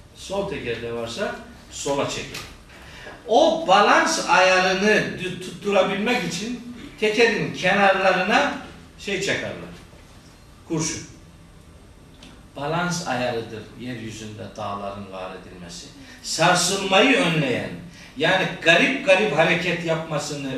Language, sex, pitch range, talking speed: Turkish, male, 115-165 Hz, 85 wpm